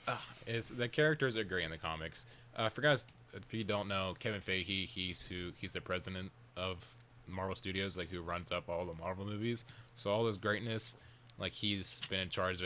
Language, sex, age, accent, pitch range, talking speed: English, male, 20-39, American, 90-115 Hz, 210 wpm